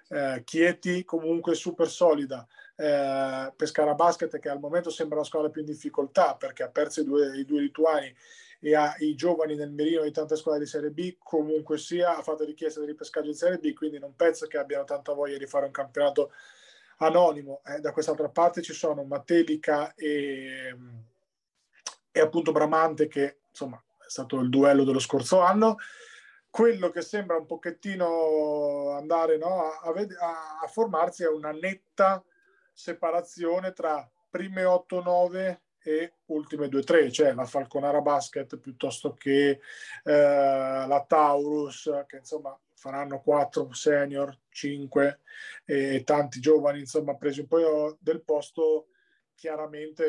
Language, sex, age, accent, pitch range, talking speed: Italian, male, 30-49, native, 140-170 Hz, 150 wpm